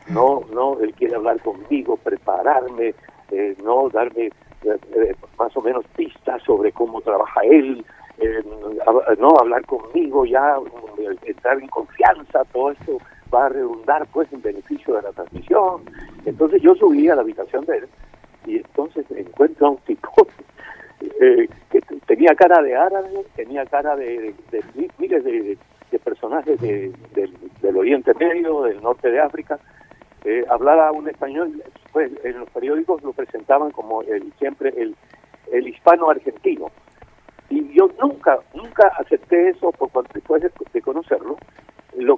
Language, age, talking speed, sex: Spanish, 50-69, 155 wpm, male